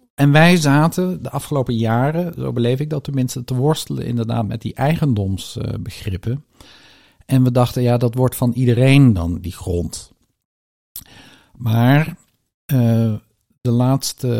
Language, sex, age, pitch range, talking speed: Dutch, male, 50-69, 105-130 Hz, 140 wpm